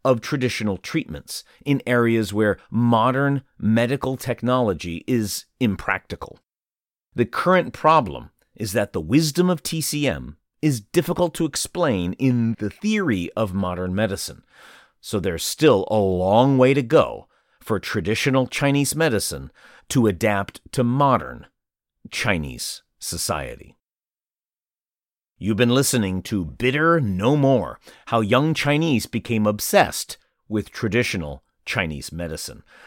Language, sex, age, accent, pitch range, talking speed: English, male, 40-59, American, 95-135 Hz, 115 wpm